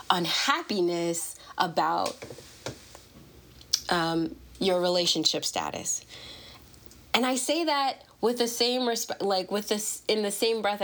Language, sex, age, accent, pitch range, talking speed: English, female, 20-39, American, 170-230 Hz, 115 wpm